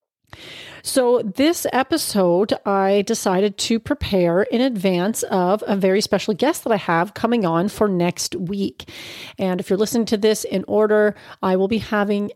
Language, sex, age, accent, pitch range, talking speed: English, female, 30-49, American, 185-230 Hz, 165 wpm